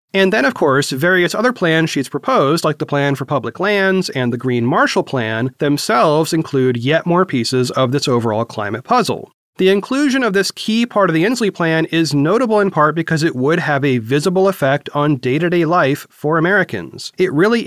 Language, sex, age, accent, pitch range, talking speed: English, male, 30-49, American, 135-190 Hz, 195 wpm